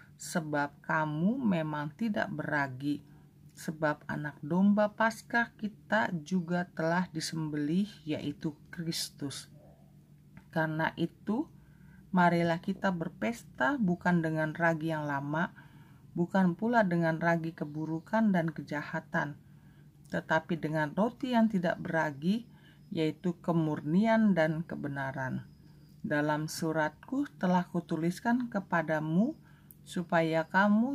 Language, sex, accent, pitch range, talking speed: Indonesian, female, native, 155-185 Hz, 95 wpm